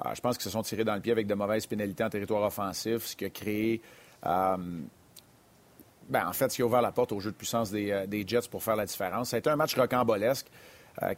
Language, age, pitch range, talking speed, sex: French, 40-59, 110-125 Hz, 260 wpm, male